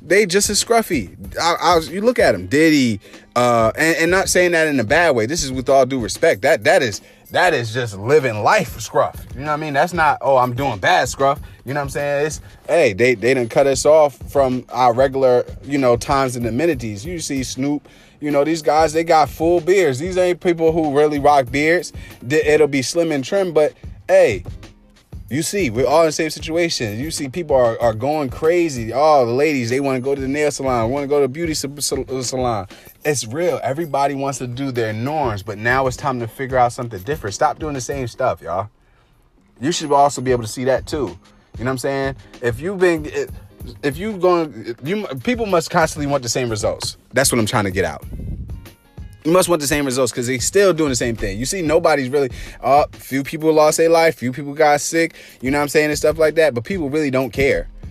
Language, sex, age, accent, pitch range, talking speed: English, male, 30-49, American, 120-155 Hz, 235 wpm